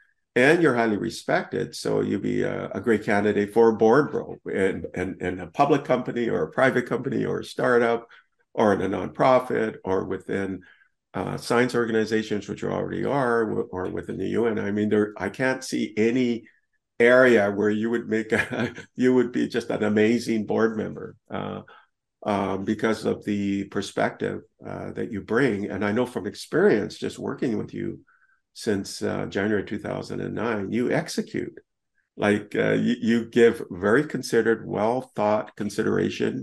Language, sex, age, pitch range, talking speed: English, male, 50-69, 105-120 Hz, 165 wpm